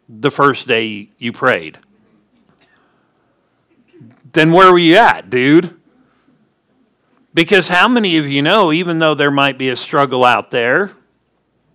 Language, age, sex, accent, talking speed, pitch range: English, 50-69, male, American, 135 wpm, 130-165 Hz